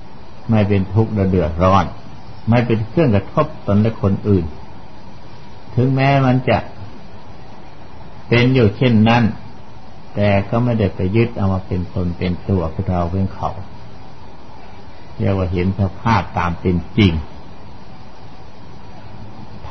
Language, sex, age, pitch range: Thai, male, 60-79, 95-115 Hz